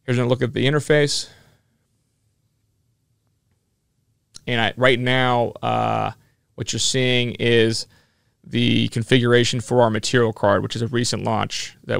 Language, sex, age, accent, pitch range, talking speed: English, male, 30-49, American, 115-130 Hz, 135 wpm